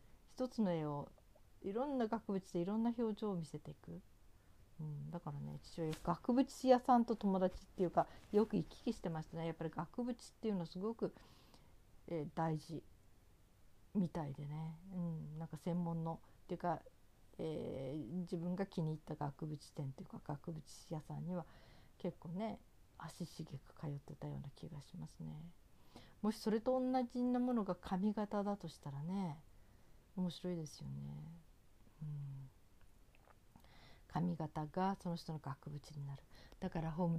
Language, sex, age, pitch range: Japanese, female, 50-69, 150-195 Hz